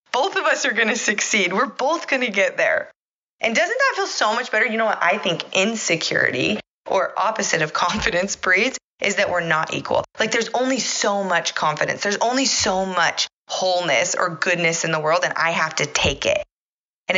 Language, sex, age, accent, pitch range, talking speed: English, female, 20-39, American, 170-255 Hz, 205 wpm